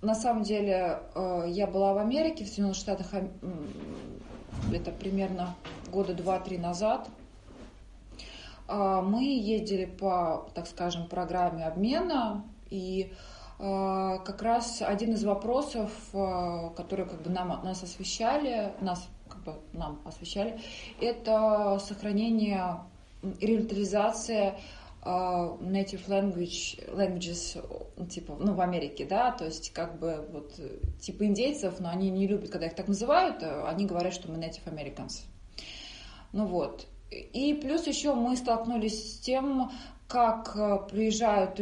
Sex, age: female, 20-39